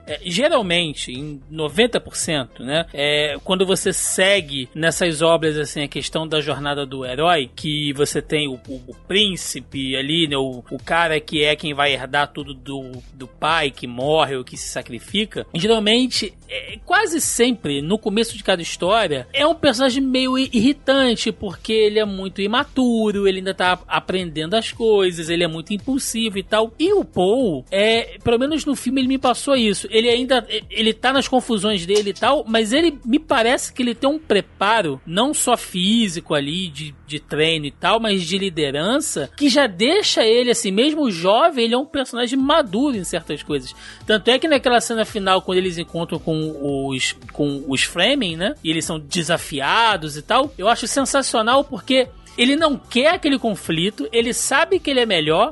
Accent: Brazilian